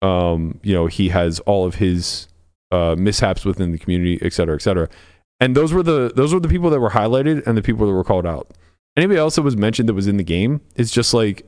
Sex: male